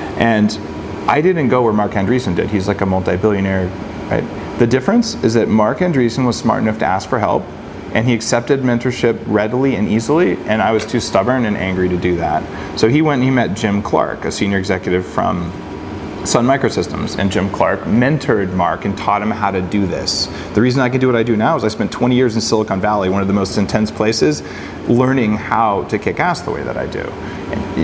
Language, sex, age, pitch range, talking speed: English, male, 30-49, 100-135 Hz, 220 wpm